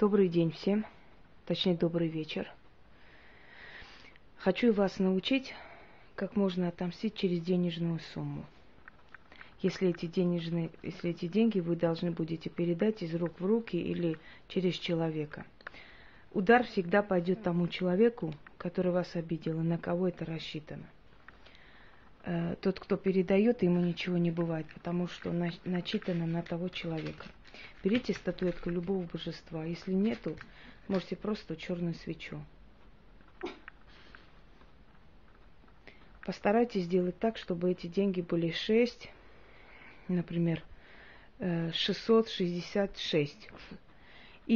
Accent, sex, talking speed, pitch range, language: native, female, 100 wpm, 170-195 Hz, Russian